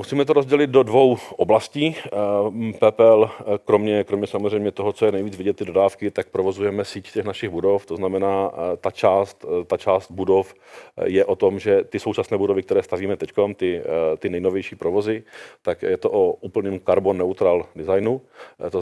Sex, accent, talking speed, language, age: male, native, 170 wpm, Czech, 40-59